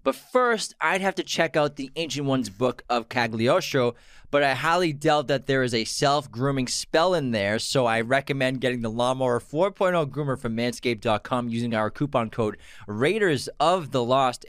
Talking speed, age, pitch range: 165 wpm, 20-39, 110-140 Hz